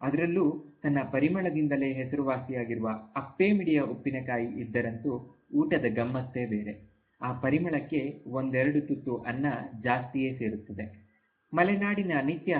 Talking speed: 90 wpm